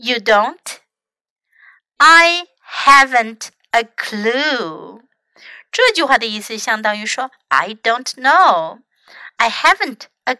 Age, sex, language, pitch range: 60-79, female, Chinese, 210-305 Hz